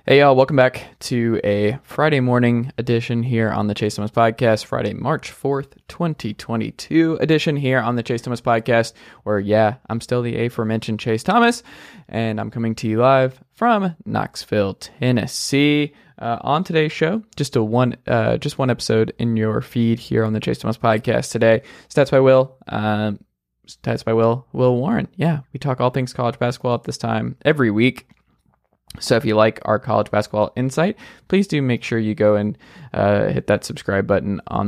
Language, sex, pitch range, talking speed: English, male, 110-135 Hz, 185 wpm